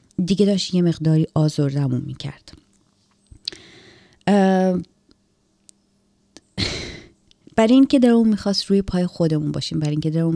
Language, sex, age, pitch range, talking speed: Persian, female, 30-49, 155-190 Hz, 115 wpm